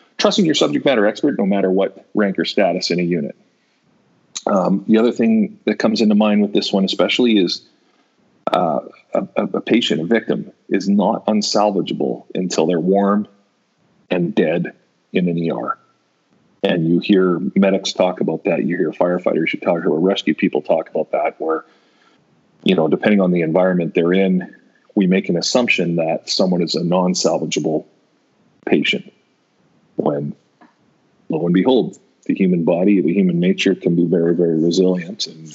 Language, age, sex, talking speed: English, 40-59, male, 165 wpm